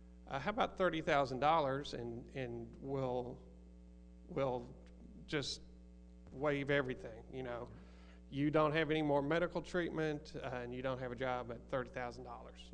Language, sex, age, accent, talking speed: English, male, 40-59, American, 130 wpm